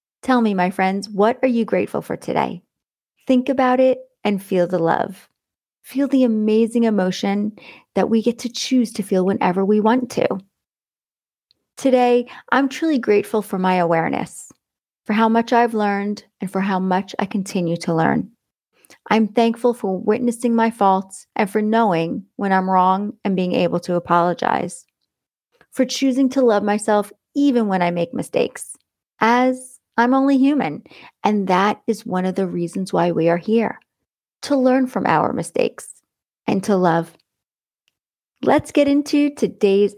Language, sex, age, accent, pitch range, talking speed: English, female, 30-49, American, 190-240 Hz, 160 wpm